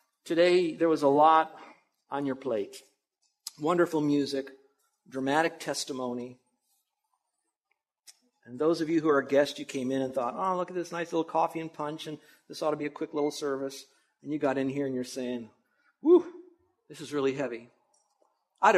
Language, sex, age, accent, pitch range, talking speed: English, male, 50-69, American, 130-165 Hz, 180 wpm